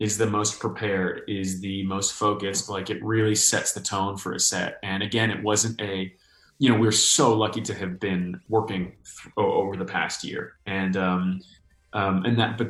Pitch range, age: 95-115 Hz, 20-39